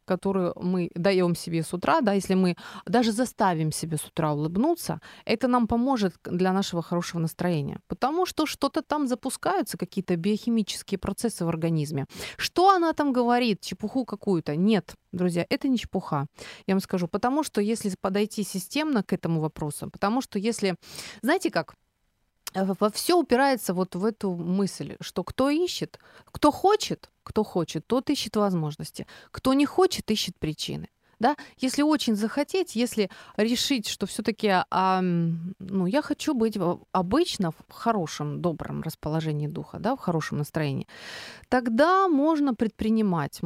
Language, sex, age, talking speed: Ukrainian, female, 30-49, 145 wpm